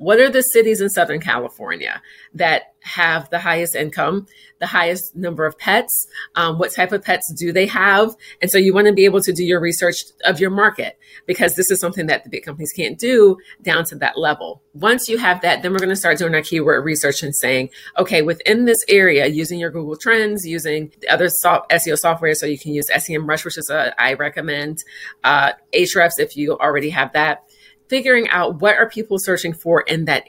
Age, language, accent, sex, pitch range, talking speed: 40-59, English, American, female, 160-200 Hz, 215 wpm